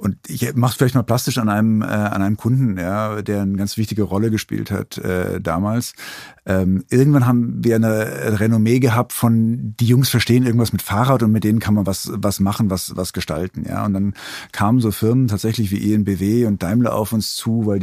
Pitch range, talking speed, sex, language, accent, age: 100-125 Hz, 200 wpm, male, German, German, 50-69